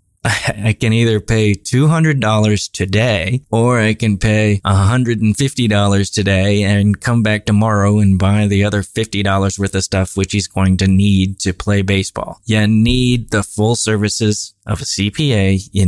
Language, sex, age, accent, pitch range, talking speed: English, male, 20-39, American, 100-115 Hz, 155 wpm